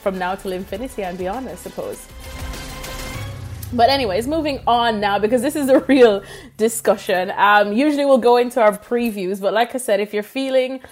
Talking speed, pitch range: 180 wpm, 195-235 Hz